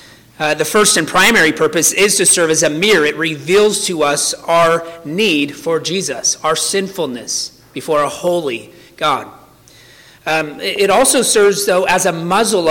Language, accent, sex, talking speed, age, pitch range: English, American, male, 160 wpm, 40-59, 150-190 Hz